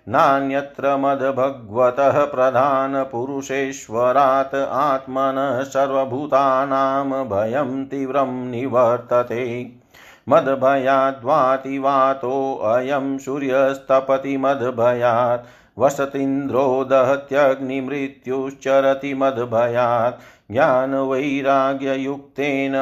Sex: male